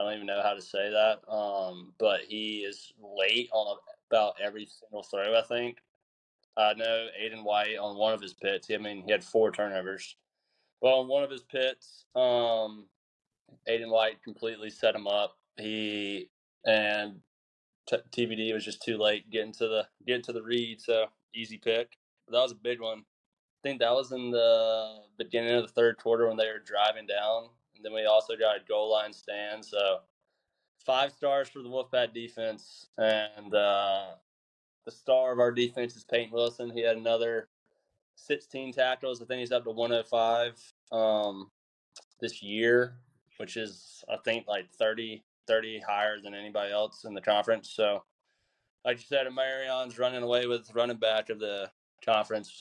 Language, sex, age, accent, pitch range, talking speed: English, male, 20-39, American, 105-120 Hz, 175 wpm